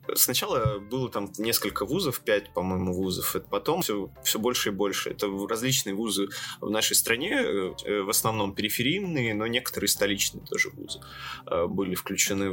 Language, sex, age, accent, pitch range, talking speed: Russian, male, 20-39, native, 100-135 Hz, 145 wpm